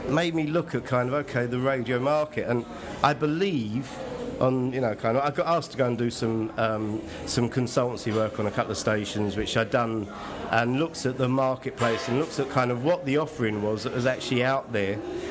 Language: English